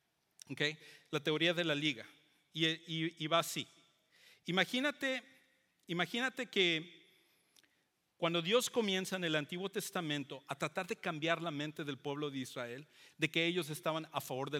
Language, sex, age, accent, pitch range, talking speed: English, male, 50-69, Mexican, 145-180 Hz, 155 wpm